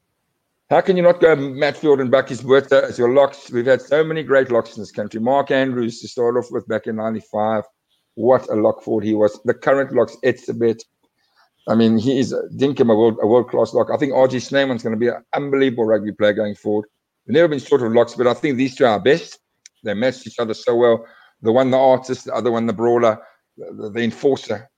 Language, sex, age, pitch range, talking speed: English, male, 50-69, 110-140 Hz, 235 wpm